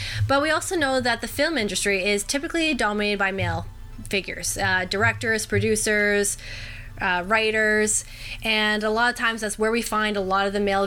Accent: American